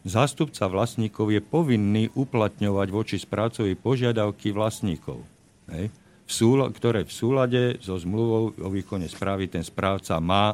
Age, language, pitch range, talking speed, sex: 50-69, Slovak, 95-110 Hz, 115 wpm, male